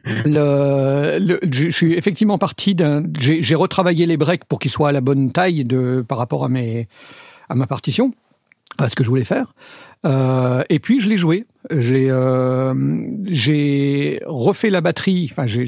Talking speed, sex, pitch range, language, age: 180 wpm, male, 130-175 Hz, French, 50-69